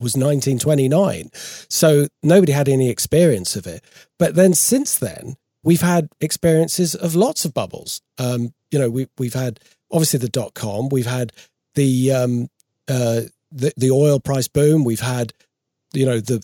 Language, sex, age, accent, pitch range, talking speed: English, male, 40-59, British, 125-165 Hz, 170 wpm